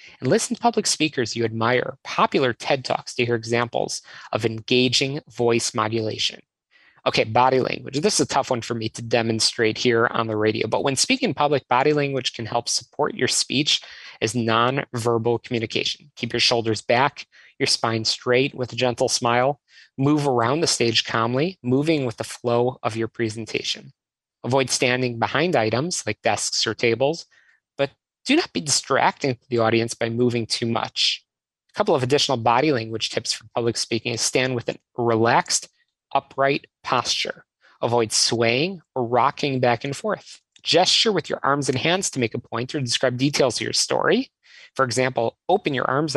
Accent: American